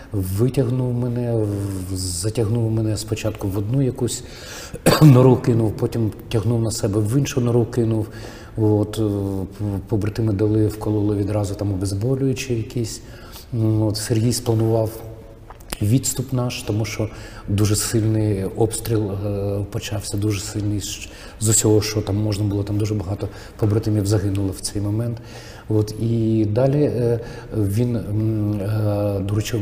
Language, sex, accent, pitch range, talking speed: Ukrainian, male, native, 105-115 Hz, 120 wpm